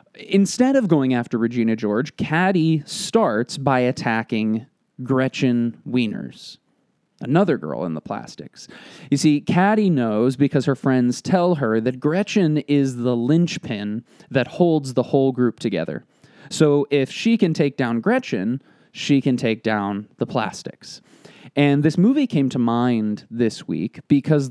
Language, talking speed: English, 145 wpm